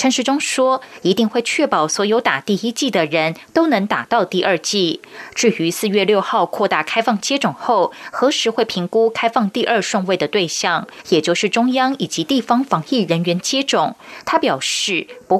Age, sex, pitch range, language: 20-39, female, 180-250 Hz, Chinese